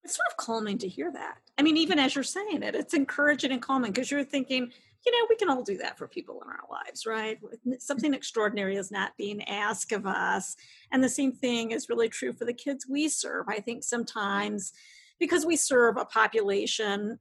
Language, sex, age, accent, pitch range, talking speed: English, female, 50-69, American, 205-290 Hz, 215 wpm